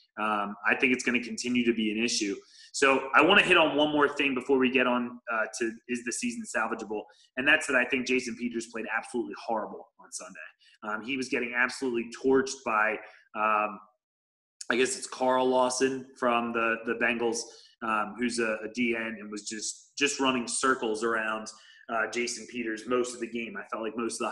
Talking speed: 205 wpm